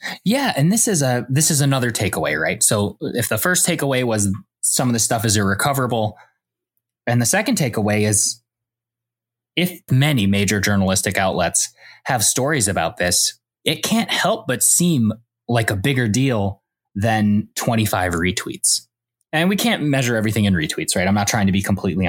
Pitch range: 105-125 Hz